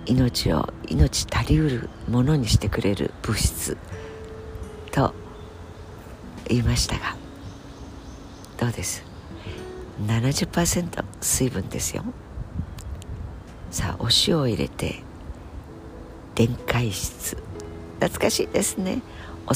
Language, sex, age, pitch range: Japanese, female, 50-69, 90-120 Hz